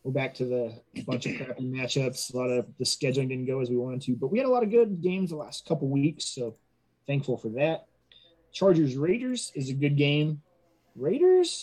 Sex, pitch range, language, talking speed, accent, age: male, 125-155 Hz, English, 215 wpm, American, 20-39